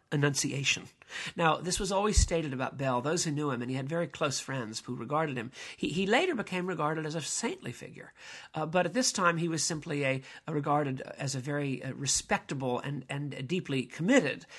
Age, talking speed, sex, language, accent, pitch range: 50-69, 210 wpm, male, English, American, 145-195 Hz